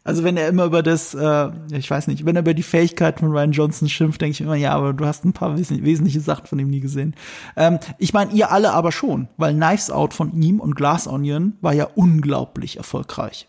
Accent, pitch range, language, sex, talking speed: German, 150-190 Hz, German, male, 240 wpm